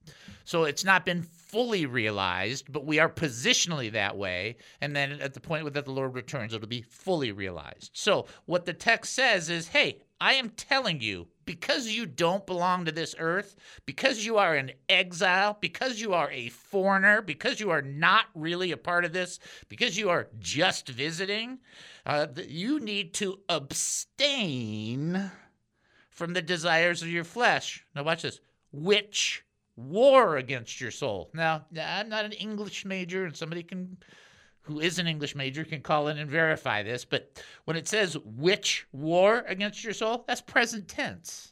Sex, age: male, 50-69